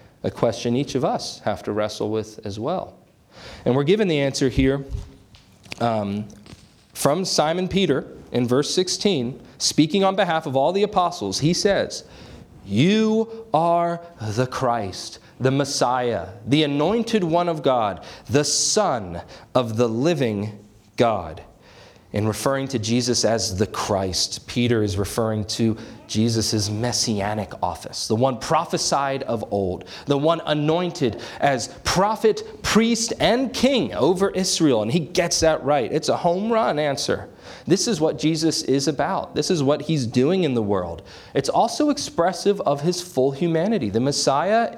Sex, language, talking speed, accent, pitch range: male, English, 150 wpm, American, 115-175 Hz